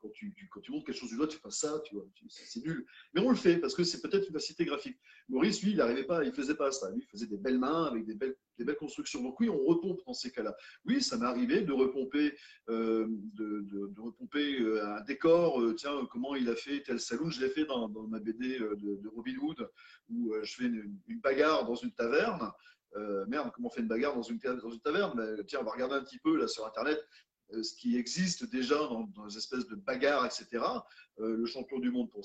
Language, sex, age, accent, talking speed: French, male, 40-59, French, 255 wpm